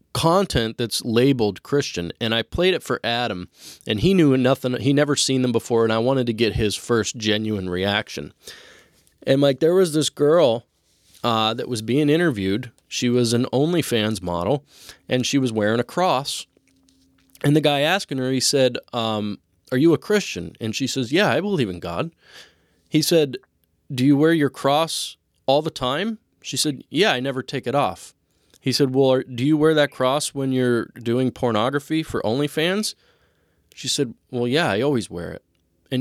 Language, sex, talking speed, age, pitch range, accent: English, male, 185 wpm, 20-39, 115-150 Hz, American